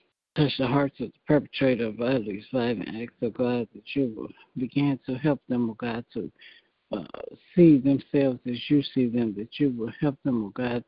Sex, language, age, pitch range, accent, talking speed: male, English, 60-79, 120-135 Hz, American, 190 wpm